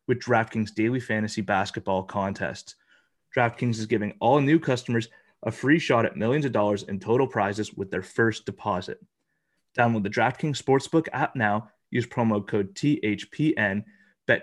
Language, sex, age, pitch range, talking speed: English, male, 30-49, 105-130 Hz, 155 wpm